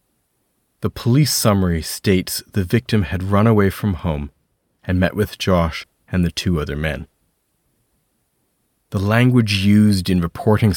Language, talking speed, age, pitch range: English, 140 wpm, 40-59, 85-105 Hz